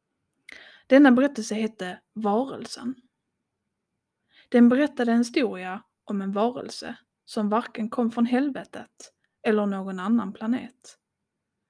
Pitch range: 215-285 Hz